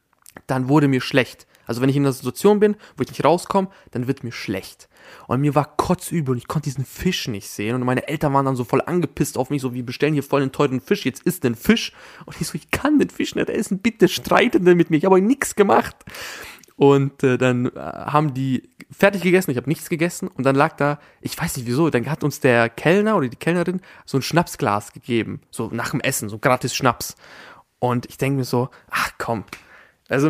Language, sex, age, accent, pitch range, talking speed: German, male, 20-39, German, 130-170 Hz, 230 wpm